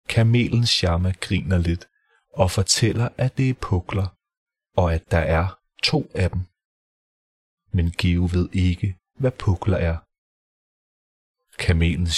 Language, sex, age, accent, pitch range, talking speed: Danish, male, 30-49, native, 85-110 Hz, 125 wpm